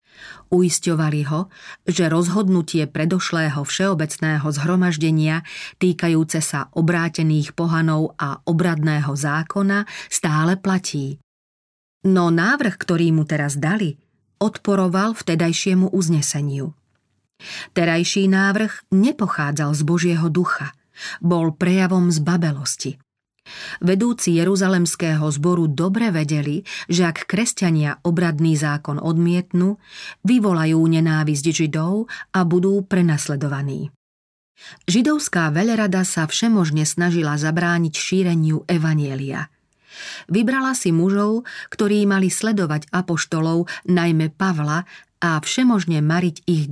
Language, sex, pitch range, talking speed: Slovak, female, 155-185 Hz, 90 wpm